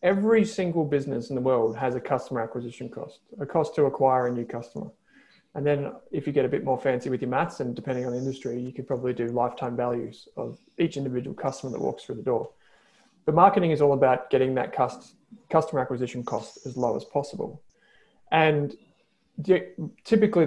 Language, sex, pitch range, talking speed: English, male, 125-160 Hz, 195 wpm